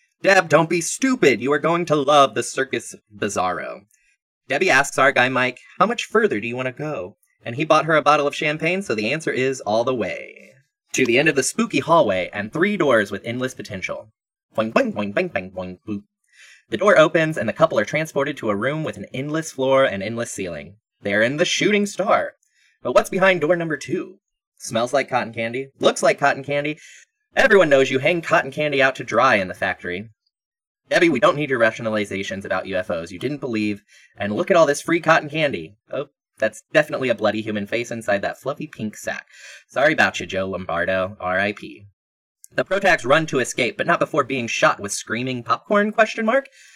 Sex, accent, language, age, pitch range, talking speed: male, American, English, 20-39, 115-180 Hz, 205 wpm